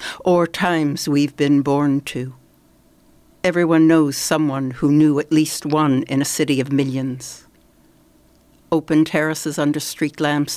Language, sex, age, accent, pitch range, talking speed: English, female, 60-79, American, 140-160 Hz, 135 wpm